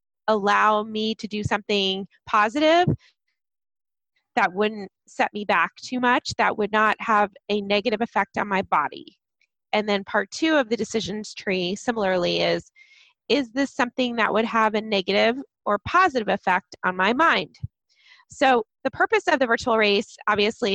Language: English